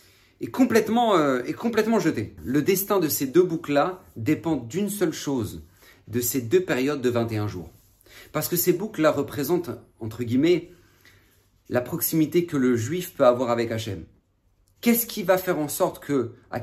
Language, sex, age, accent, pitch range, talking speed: French, male, 40-59, French, 120-185 Hz, 160 wpm